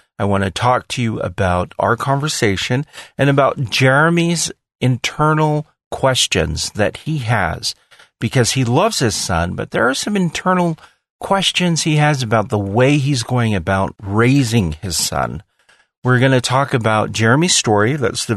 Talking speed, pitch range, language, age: 155 wpm, 95-125 Hz, English, 40-59